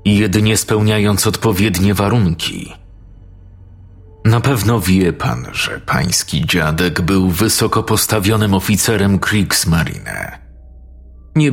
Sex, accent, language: male, native, Polish